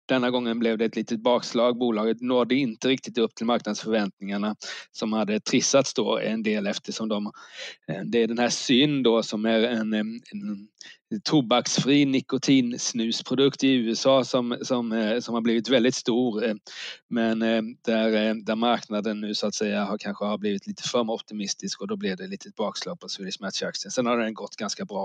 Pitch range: 110-135 Hz